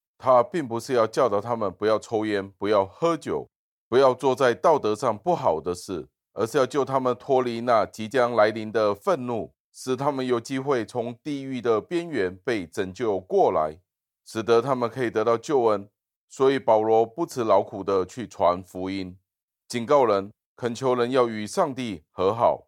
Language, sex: Chinese, male